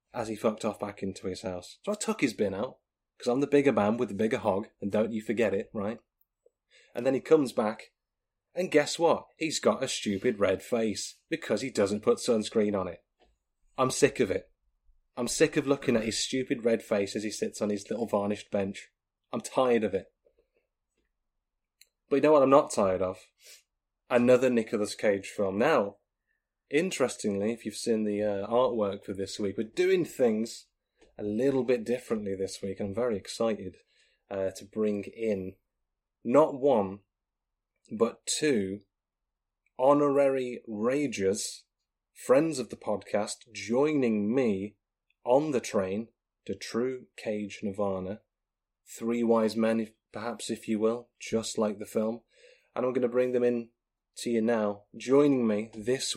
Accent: British